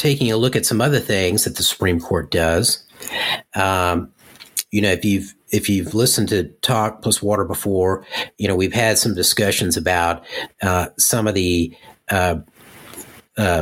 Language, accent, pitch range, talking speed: English, American, 90-110 Hz, 165 wpm